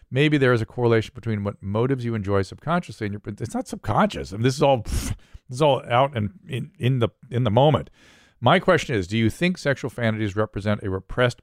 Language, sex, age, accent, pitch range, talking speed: English, male, 40-59, American, 100-125 Hz, 225 wpm